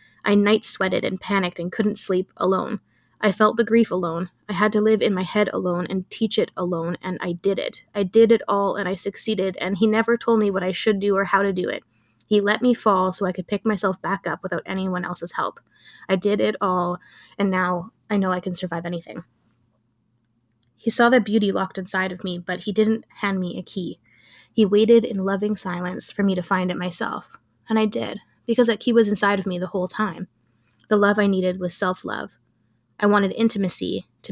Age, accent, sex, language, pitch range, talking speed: 20-39, American, female, English, 180-210 Hz, 220 wpm